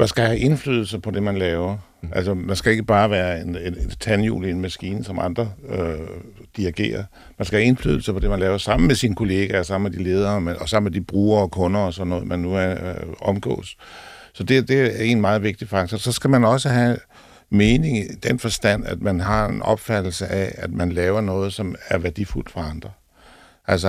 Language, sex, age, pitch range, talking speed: Danish, male, 60-79, 90-110 Hz, 225 wpm